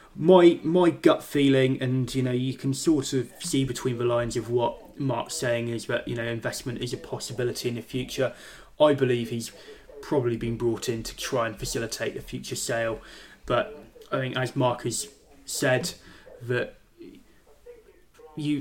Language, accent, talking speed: English, British, 170 wpm